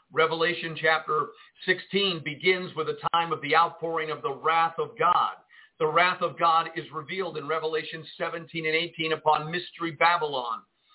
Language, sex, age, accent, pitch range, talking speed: English, male, 50-69, American, 160-190 Hz, 160 wpm